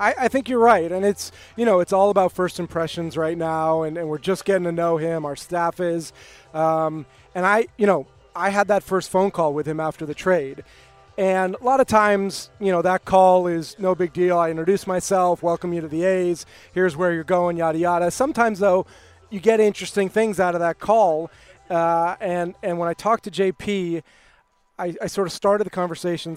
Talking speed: 215 wpm